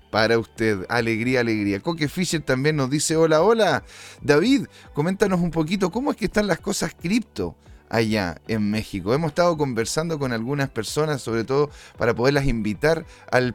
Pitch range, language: 115-160 Hz, Spanish